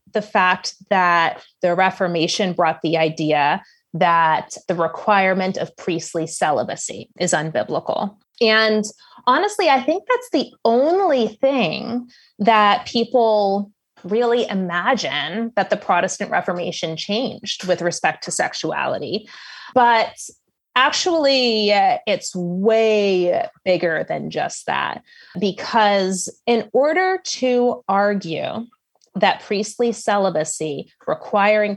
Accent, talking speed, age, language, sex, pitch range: American, 100 wpm, 20-39, English, female, 175-235 Hz